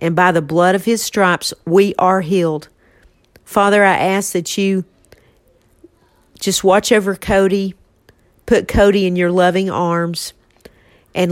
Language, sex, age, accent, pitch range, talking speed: English, female, 50-69, American, 170-200 Hz, 140 wpm